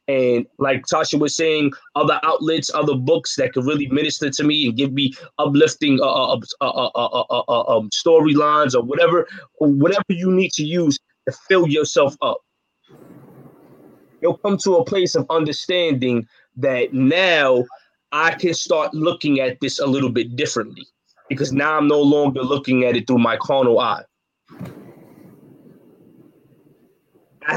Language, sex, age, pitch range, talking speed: English, male, 20-39, 130-170 Hz, 155 wpm